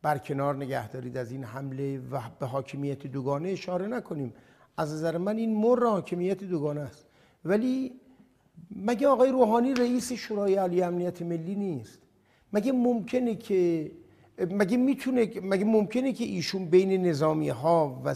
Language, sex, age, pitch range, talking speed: Persian, male, 60-79, 140-185 Hz, 145 wpm